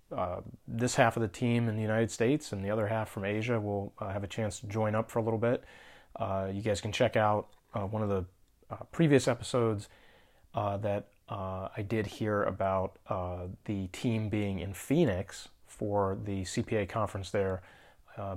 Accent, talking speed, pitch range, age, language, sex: American, 195 wpm, 100-115 Hz, 30-49, English, male